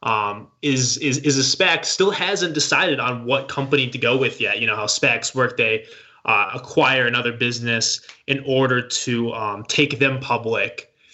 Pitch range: 120-150 Hz